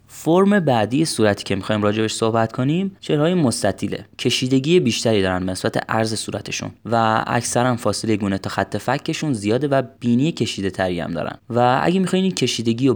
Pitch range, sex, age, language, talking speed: 100-130 Hz, male, 20-39, Persian, 170 wpm